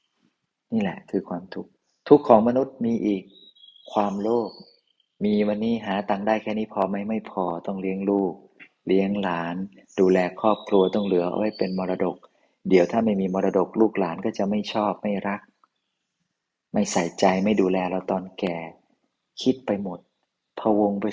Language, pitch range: Thai, 95-110 Hz